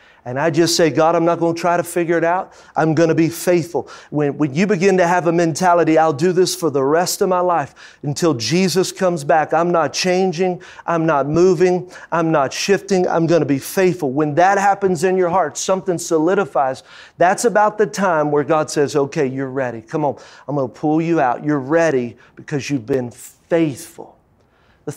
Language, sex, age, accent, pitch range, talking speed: English, male, 30-49, American, 145-185 Hz, 210 wpm